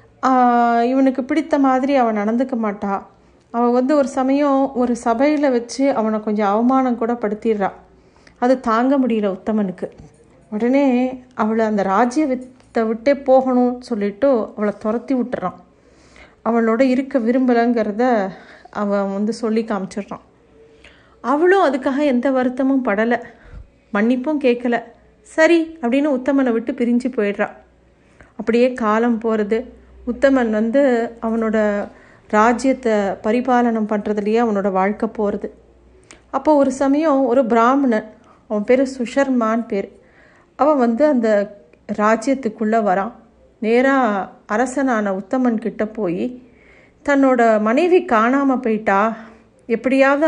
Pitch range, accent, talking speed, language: 220-265 Hz, native, 105 wpm, Tamil